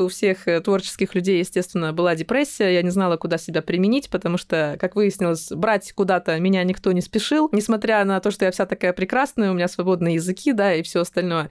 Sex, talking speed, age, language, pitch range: female, 205 wpm, 20-39, Russian, 180-230 Hz